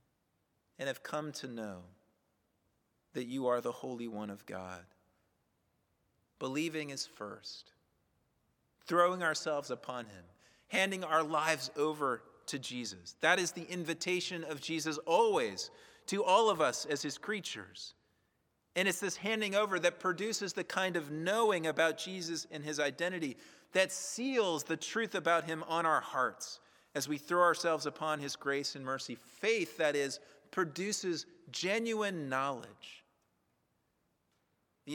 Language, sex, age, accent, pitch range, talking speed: English, male, 30-49, American, 145-180 Hz, 140 wpm